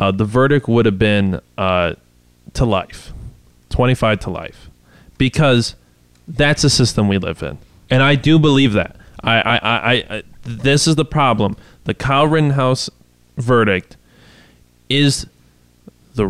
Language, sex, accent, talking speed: English, male, American, 140 wpm